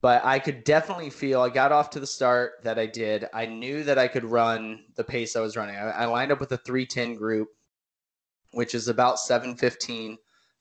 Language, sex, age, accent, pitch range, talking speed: English, male, 20-39, American, 110-125 Hz, 215 wpm